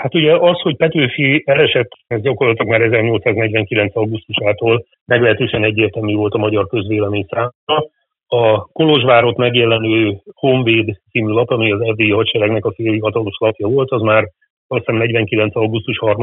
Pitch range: 105-125 Hz